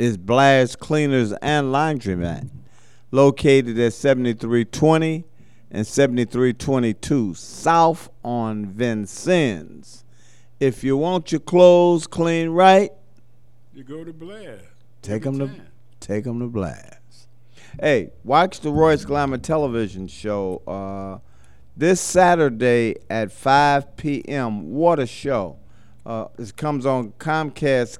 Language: English